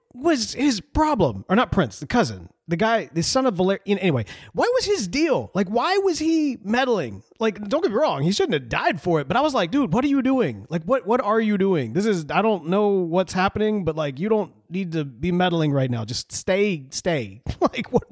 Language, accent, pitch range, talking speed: English, American, 155-235 Hz, 240 wpm